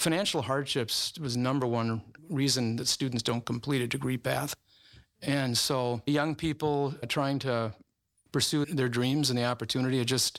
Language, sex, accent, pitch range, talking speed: English, male, American, 115-140 Hz, 150 wpm